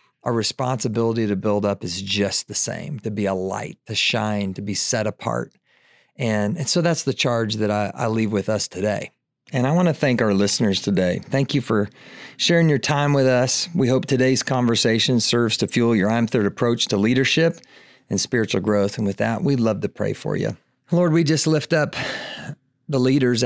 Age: 40-59